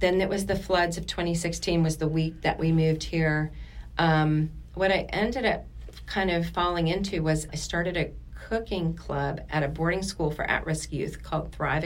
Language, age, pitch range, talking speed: English, 40-59, 155-180 Hz, 190 wpm